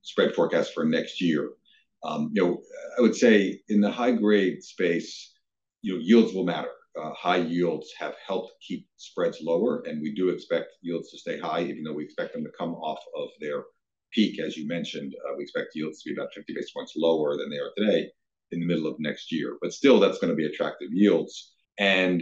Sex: male